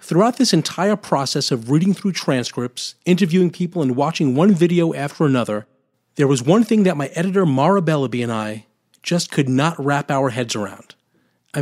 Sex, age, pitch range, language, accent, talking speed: male, 40-59, 130-170 Hz, English, American, 180 wpm